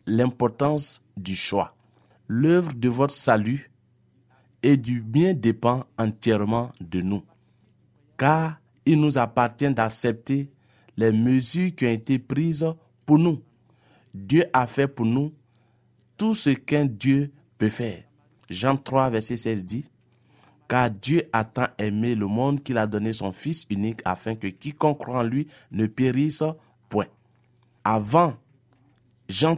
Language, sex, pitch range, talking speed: French, male, 110-140 Hz, 140 wpm